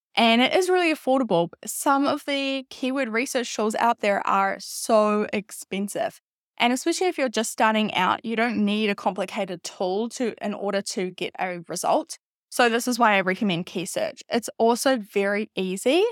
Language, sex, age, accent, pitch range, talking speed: English, female, 10-29, Australian, 195-255 Hz, 175 wpm